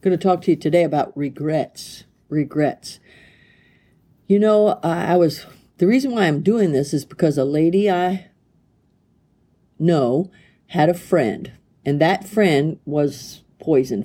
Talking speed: 140 wpm